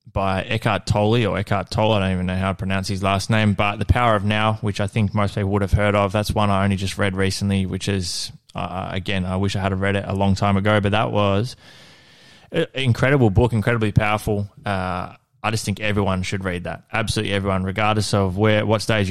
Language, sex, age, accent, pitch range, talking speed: English, male, 20-39, Australian, 95-110 Hz, 230 wpm